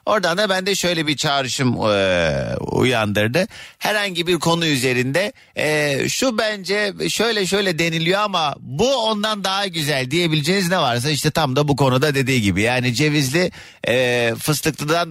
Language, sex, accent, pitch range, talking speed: Turkish, male, native, 110-175 Hz, 140 wpm